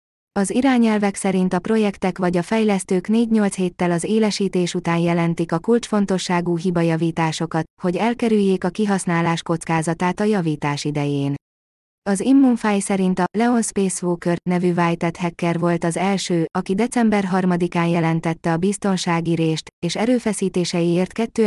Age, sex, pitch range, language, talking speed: 20-39, female, 165-200 Hz, Hungarian, 130 wpm